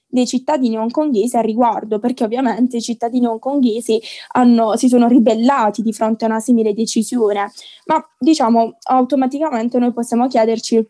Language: Italian